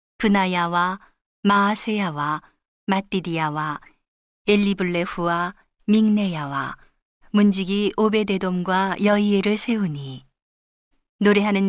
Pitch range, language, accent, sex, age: 170-205 Hz, Korean, native, female, 40-59